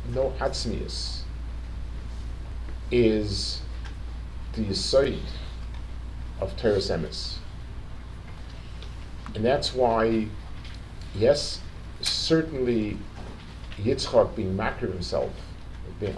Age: 50-69